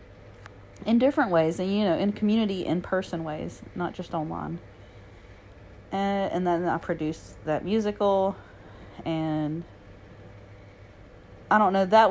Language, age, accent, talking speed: English, 40-59, American, 130 wpm